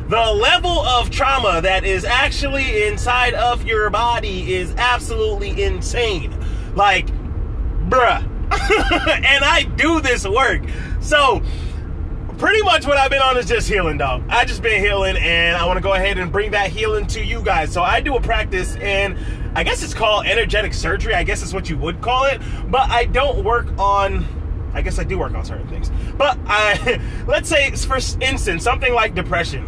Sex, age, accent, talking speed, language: male, 20-39, American, 185 wpm, English